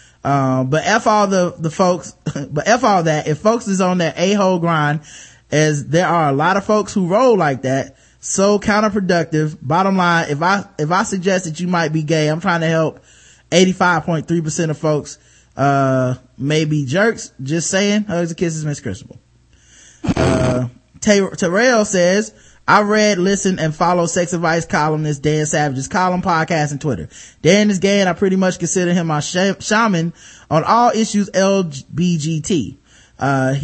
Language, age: English, 20-39